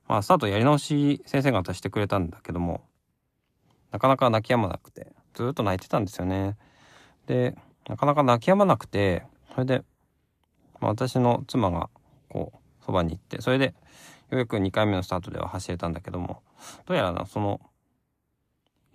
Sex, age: male, 20-39